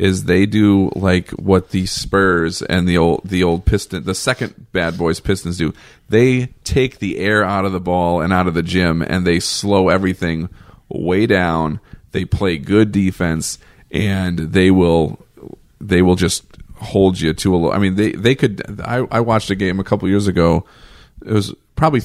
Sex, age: male, 40-59